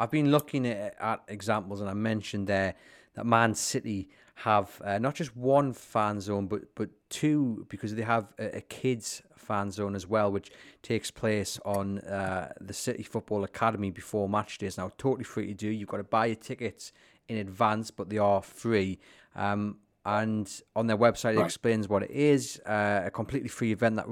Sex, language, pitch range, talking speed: male, English, 100-120 Hz, 195 wpm